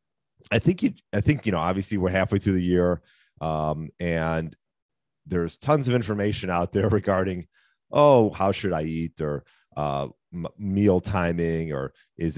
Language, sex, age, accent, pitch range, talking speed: English, male, 40-59, American, 80-105 Hz, 165 wpm